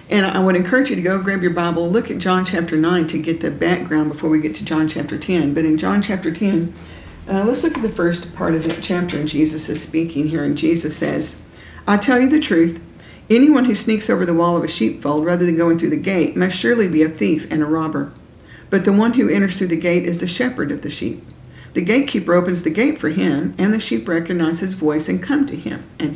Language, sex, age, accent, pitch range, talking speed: English, female, 50-69, American, 160-200 Hz, 250 wpm